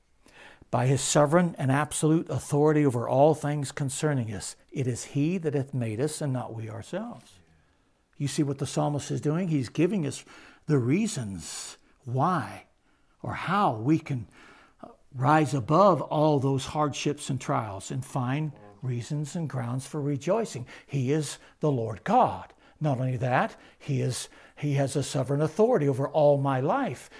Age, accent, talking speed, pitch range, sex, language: 60-79, American, 155 wpm, 130-195 Hz, male, English